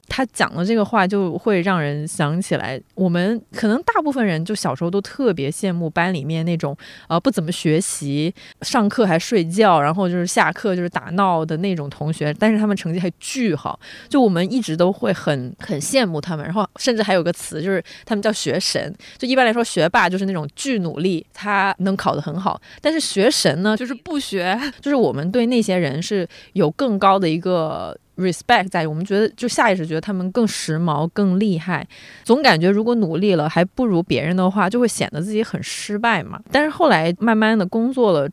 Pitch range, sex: 170-220 Hz, female